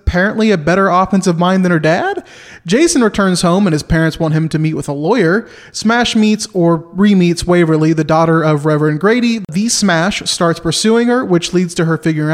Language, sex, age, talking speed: English, male, 30-49, 200 wpm